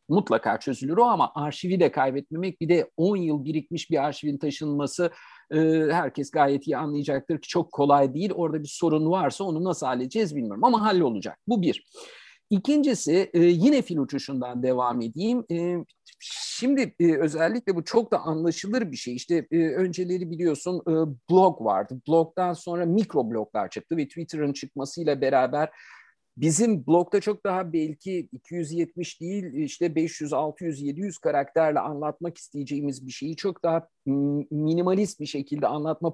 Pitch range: 145-185 Hz